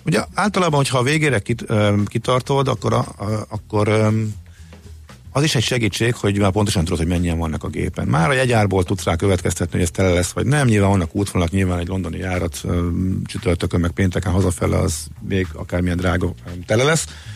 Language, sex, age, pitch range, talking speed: Hungarian, male, 50-69, 90-110 Hz, 195 wpm